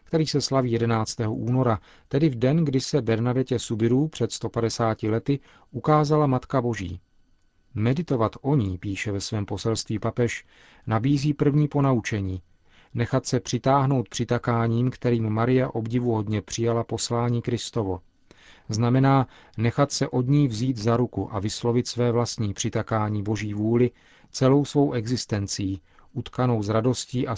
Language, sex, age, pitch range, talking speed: Czech, male, 40-59, 110-125 Hz, 135 wpm